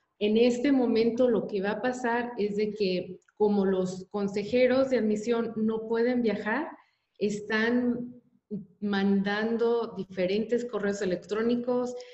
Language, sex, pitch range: English, female, 195-235 Hz